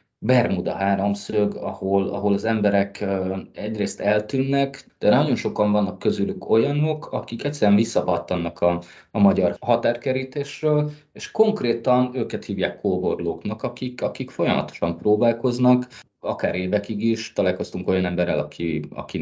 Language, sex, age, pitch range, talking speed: Hungarian, male, 20-39, 95-115 Hz, 120 wpm